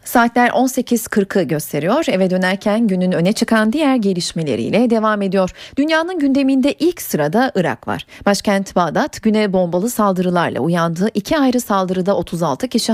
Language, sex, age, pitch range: Turkish, female, 40-59, 185-250 Hz